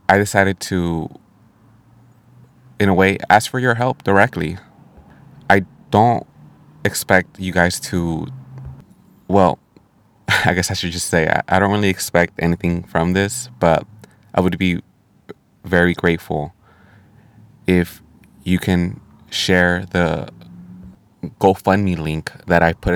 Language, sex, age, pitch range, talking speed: English, male, 20-39, 85-105 Hz, 125 wpm